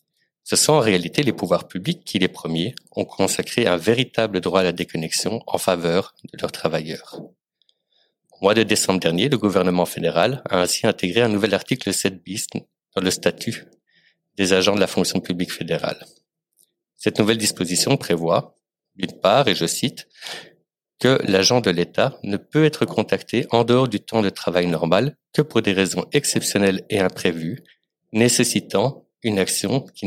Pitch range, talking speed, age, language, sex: 90-120 Hz, 170 wpm, 50-69, French, male